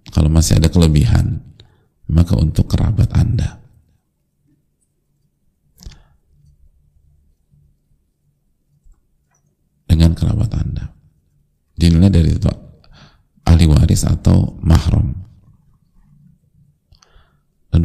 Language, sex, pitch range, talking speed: Indonesian, male, 80-100 Hz, 55 wpm